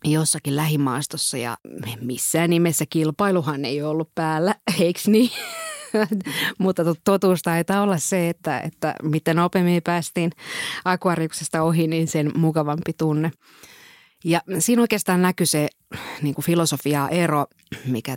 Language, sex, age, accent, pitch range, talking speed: Finnish, female, 30-49, native, 140-170 Hz, 115 wpm